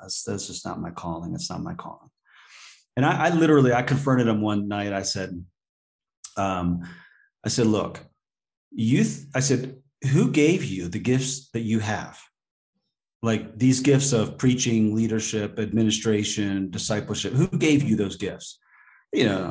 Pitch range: 95-130 Hz